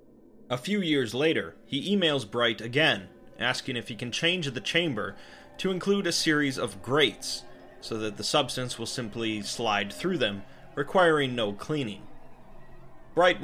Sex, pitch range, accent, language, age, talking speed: male, 110-150 Hz, American, English, 30-49, 150 wpm